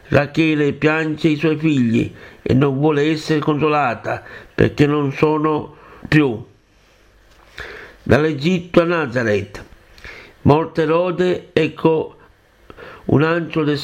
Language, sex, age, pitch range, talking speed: Italian, male, 60-79, 145-165 Hz, 100 wpm